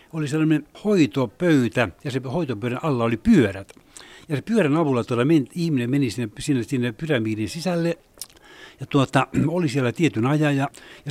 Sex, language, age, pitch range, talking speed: male, Finnish, 60-79, 125-155 Hz, 150 wpm